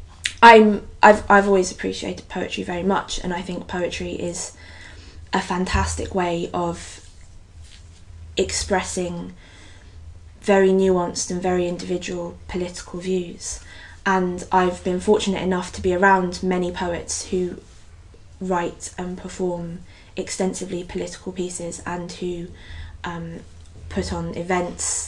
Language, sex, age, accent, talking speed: English, female, 20-39, British, 115 wpm